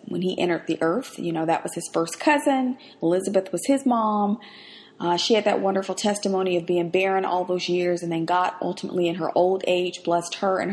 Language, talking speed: English, 220 wpm